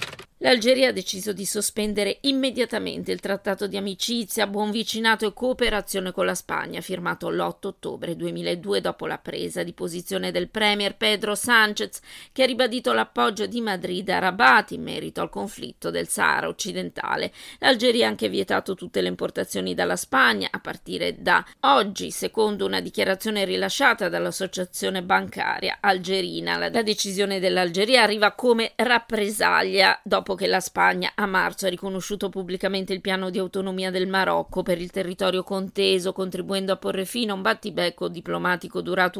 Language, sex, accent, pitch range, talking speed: Italian, female, native, 180-215 Hz, 150 wpm